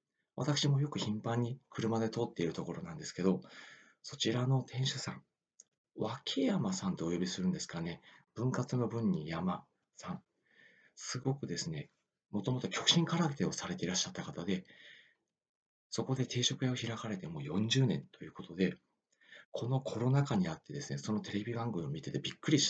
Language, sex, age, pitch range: Japanese, male, 40-59, 110-150 Hz